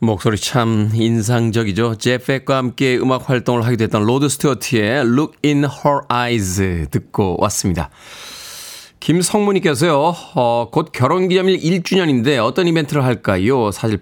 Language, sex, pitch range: Korean, male, 110-155 Hz